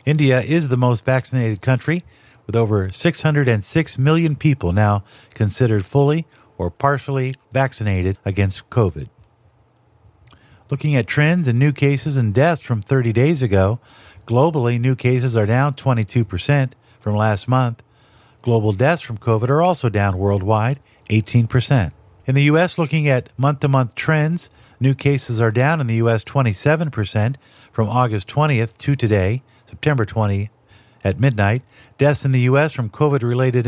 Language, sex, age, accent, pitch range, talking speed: English, male, 50-69, American, 110-140 Hz, 140 wpm